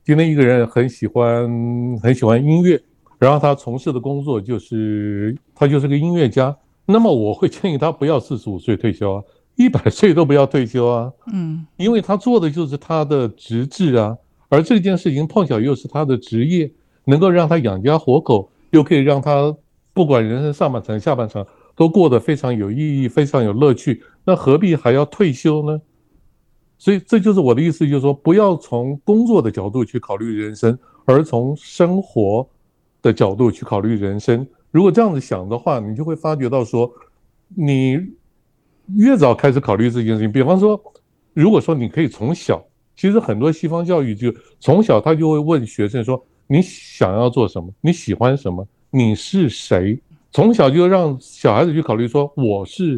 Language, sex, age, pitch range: Chinese, male, 60-79, 120-165 Hz